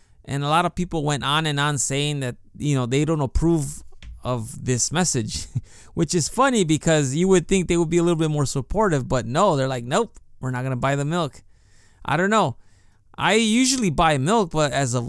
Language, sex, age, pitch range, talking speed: English, male, 20-39, 125-170 Hz, 225 wpm